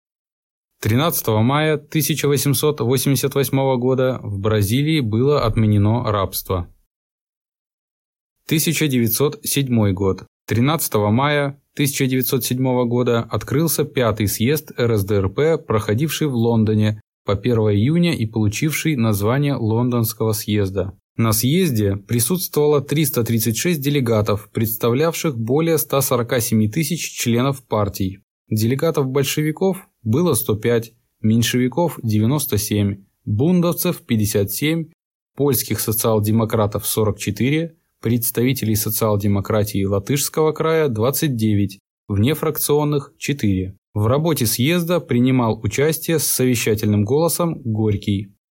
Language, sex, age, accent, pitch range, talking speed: Russian, male, 20-39, native, 110-145 Hz, 85 wpm